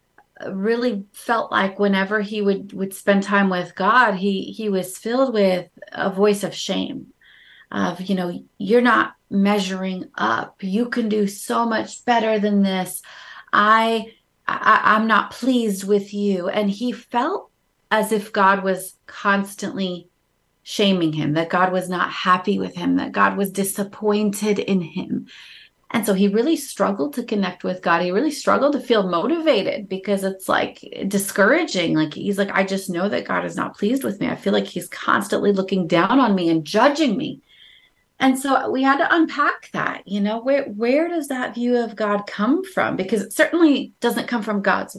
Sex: female